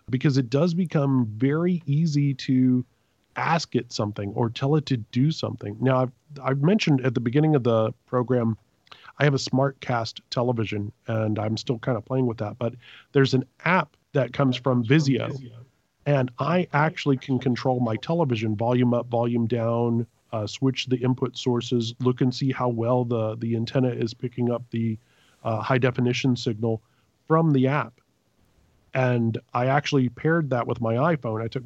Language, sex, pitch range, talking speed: English, male, 115-135 Hz, 175 wpm